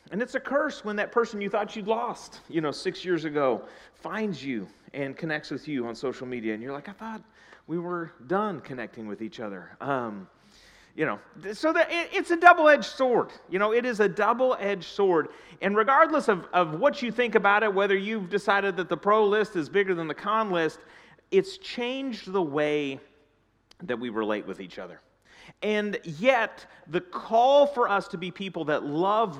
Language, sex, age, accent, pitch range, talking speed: English, male, 40-59, American, 150-215 Hz, 195 wpm